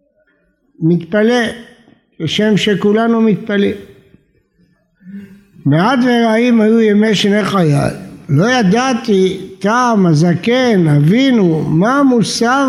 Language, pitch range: Hebrew, 180-230 Hz